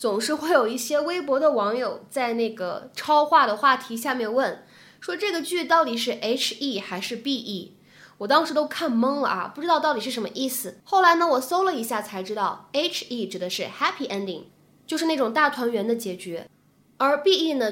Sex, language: female, Chinese